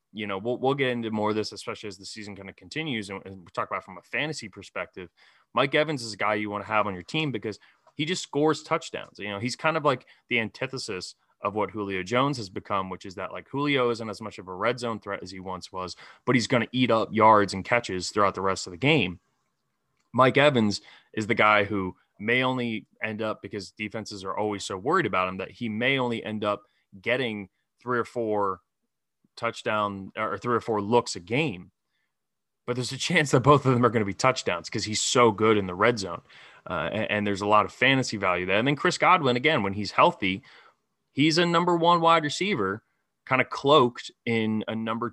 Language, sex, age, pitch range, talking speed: English, male, 20-39, 100-130 Hz, 235 wpm